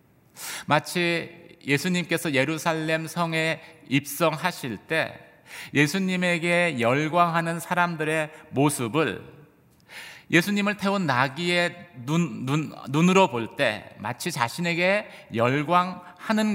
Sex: male